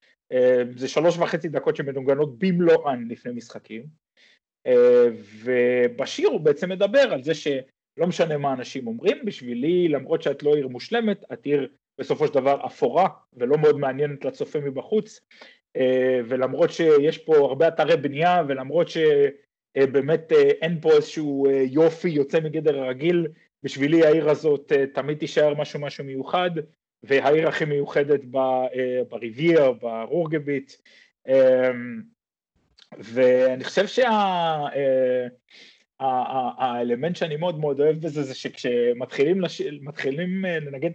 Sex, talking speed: male, 120 wpm